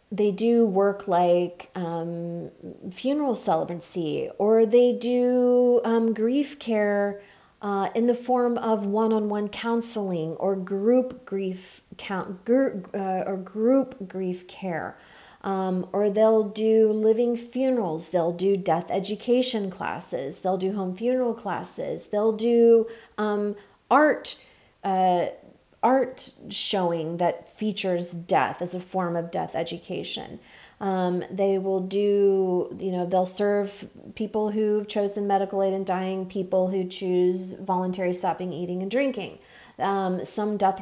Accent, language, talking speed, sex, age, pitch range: American, English, 130 wpm, female, 30-49, 185-215 Hz